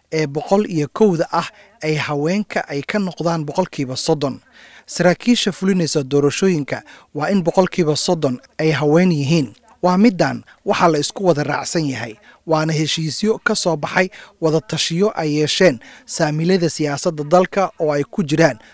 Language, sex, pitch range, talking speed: English, male, 145-185 Hz, 165 wpm